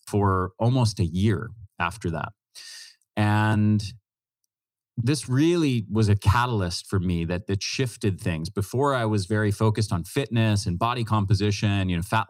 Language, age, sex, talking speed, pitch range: English, 30-49, male, 150 wpm, 100-120 Hz